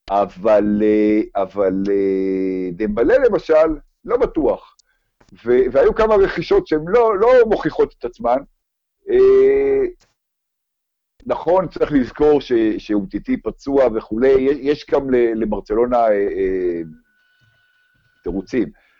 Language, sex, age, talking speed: Hebrew, male, 50-69, 80 wpm